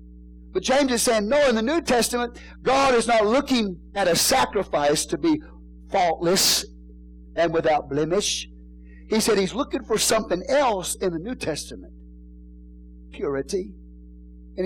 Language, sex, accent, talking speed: English, male, American, 145 wpm